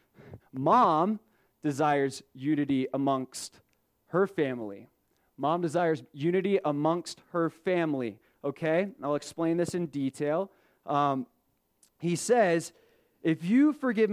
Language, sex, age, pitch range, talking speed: English, male, 20-39, 155-190 Hz, 100 wpm